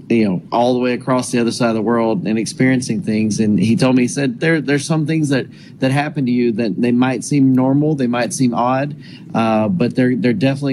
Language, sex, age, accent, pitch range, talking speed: English, male, 30-49, American, 115-130 Hz, 245 wpm